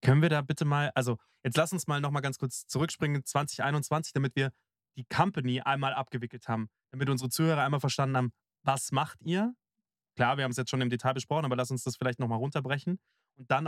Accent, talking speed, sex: German, 215 wpm, male